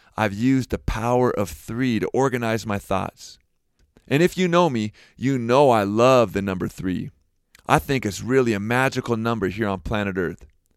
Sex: male